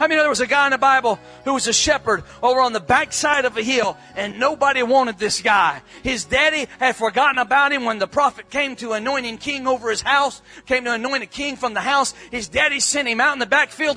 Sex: male